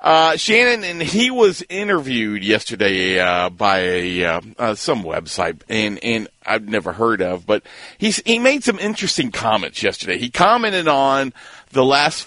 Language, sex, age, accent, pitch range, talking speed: English, male, 50-69, American, 115-155 Hz, 160 wpm